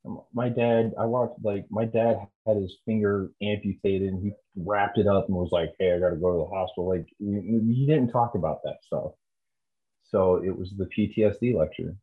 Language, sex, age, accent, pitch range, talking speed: English, male, 30-49, American, 80-95 Hz, 200 wpm